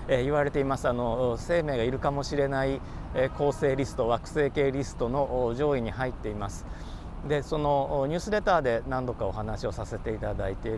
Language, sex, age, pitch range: Japanese, male, 40-59, 100-140 Hz